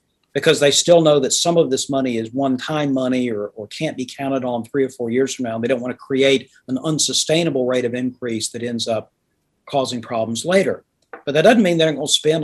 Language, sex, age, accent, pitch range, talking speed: English, male, 40-59, American, 125-155 Hz, 235 wpm